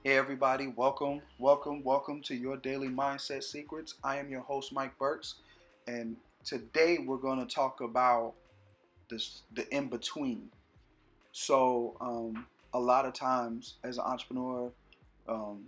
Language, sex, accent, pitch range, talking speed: English, male, American, 115-135 Hz, 140 wpm